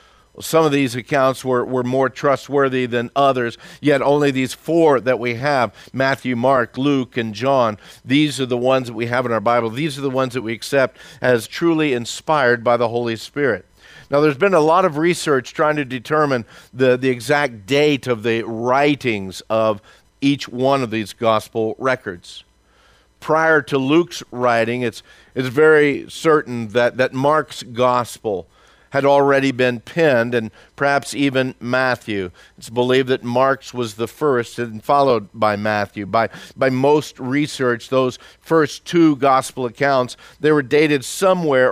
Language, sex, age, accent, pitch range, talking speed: English, male, 50-69, American, 120-145 Hz, 165 wpm